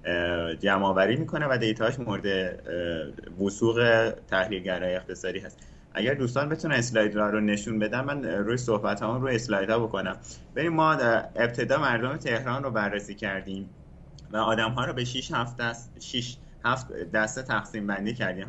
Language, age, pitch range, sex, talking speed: Persian, 30-49, 100-135 Hz, male, 145 wpm